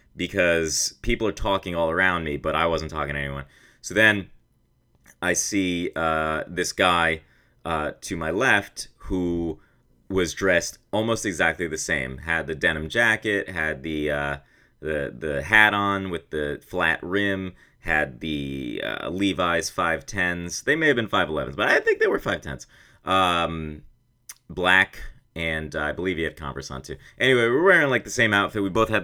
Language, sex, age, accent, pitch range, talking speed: English, male, 30-49, American, 75-95 Hz, 175 wpm